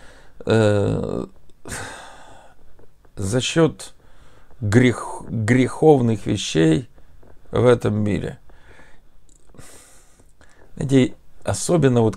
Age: 50-69